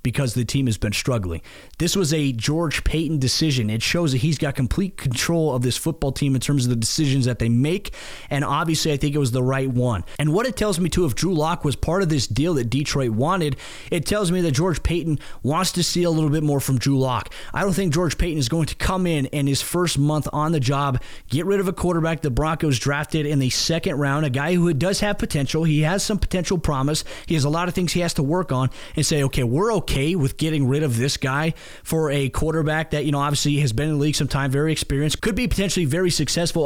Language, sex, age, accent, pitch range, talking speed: English, male, 30-49, American, 135-165 Hz, 255 wpm